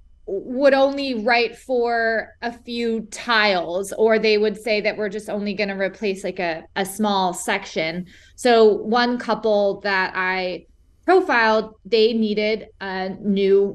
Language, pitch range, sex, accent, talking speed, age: English, 190-225 Hz, female, American, 145 wpm, 20-39